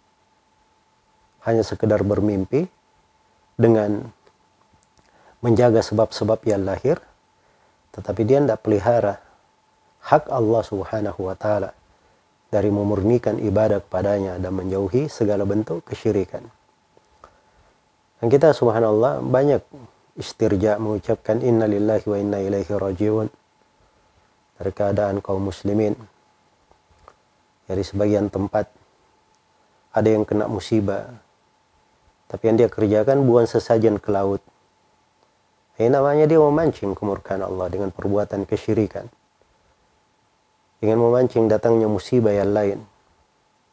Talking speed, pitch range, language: 100 wpm, 100-115 Hz, Indonesian